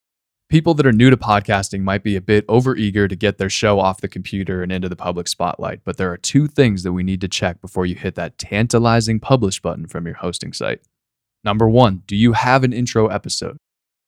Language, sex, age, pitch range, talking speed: English, male, 20-39, 95-115 Hz, 220 wpm